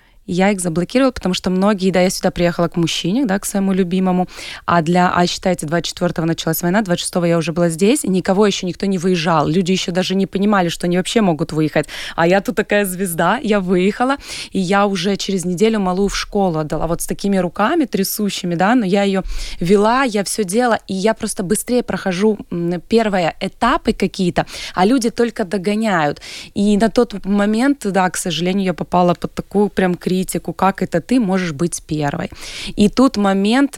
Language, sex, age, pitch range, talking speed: Ukrainian, female, 20-39, 175-215 Hz, 190 wpm